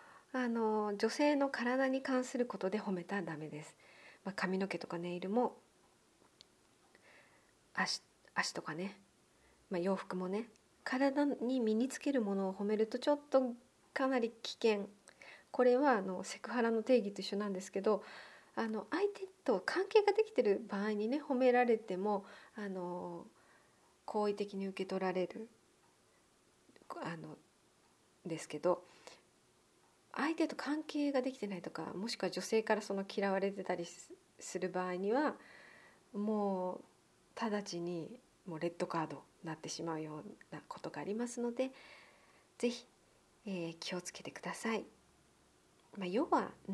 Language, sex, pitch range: Japanese, female, 185-260 Hz